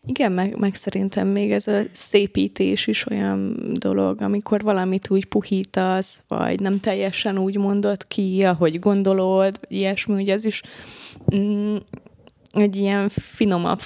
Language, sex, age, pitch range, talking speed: Hungarian, female, 20-39, 180-205 Hz, 135 wpm